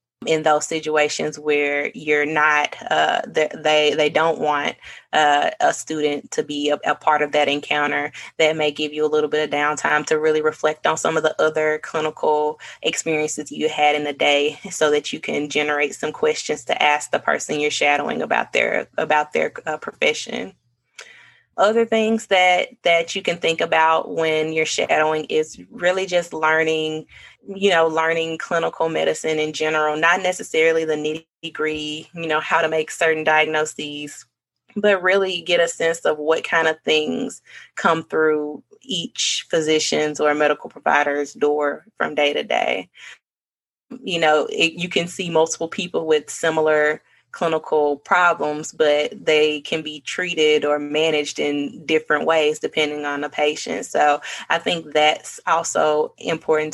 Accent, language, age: American, English, 20-39